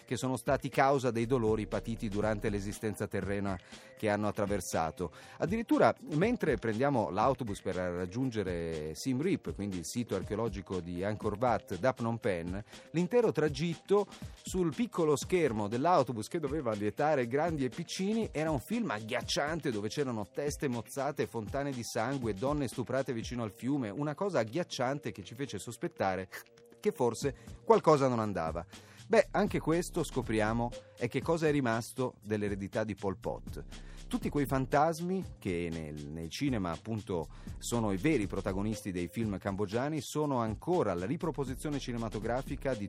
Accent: native